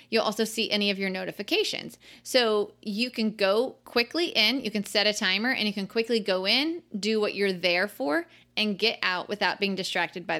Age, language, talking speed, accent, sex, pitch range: 20-39, English, 210 wpm, American, female, 190-235 Hz